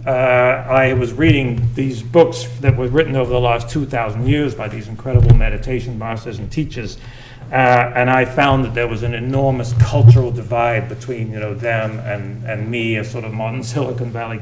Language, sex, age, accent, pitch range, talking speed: English, male, 40-59, American, 115-135 Hz, 185 wpm